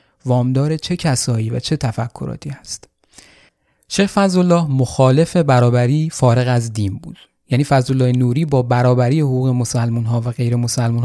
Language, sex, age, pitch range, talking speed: Persian, male, 30-49, 125-155 Hz, 145 wpm